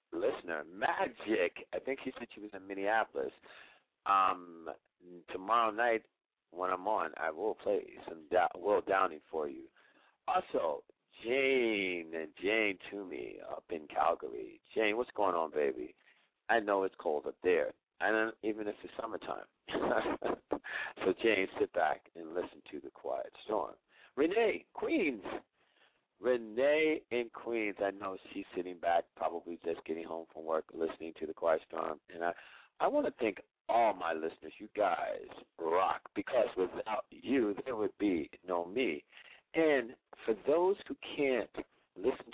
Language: English